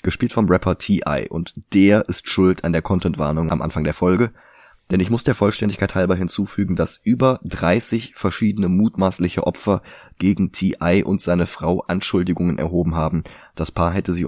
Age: 20-39